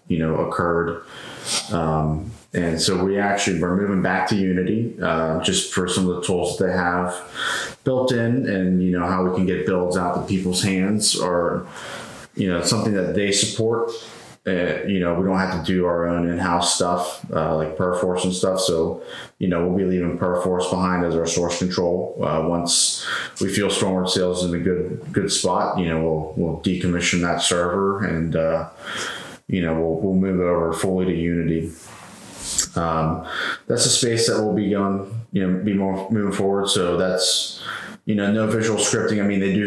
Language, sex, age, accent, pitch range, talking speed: English, male, 30-49, American, 85-95 Hz, 195 wpm